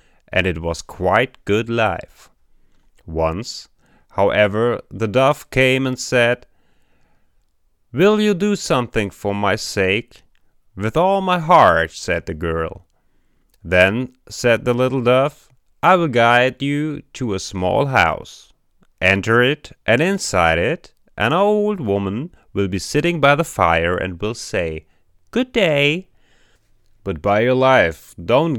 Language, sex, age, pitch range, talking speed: English, male, 30-49, 95-145 Hz, 135 wpm